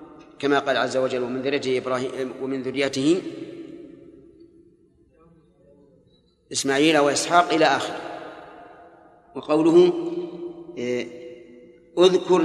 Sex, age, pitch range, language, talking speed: male, 40-59, 135-160 Hz, Arabic, 70 wpm